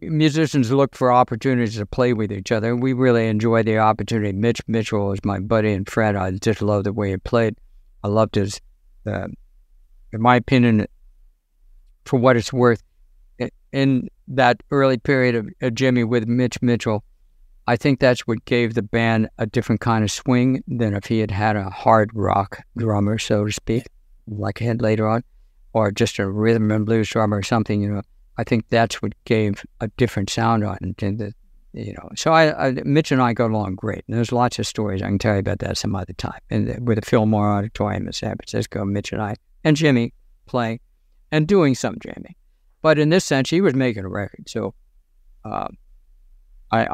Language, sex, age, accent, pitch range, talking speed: English, male, 60-79, American, 100-120 Hz, 200 wpm